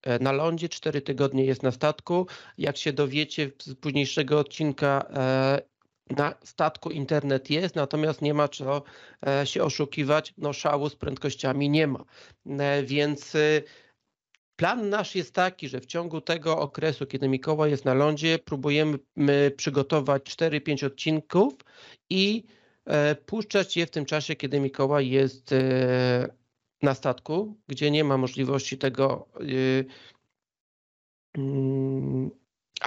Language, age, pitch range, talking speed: Polish, 40-59, 140-155 Hz, 120 wpm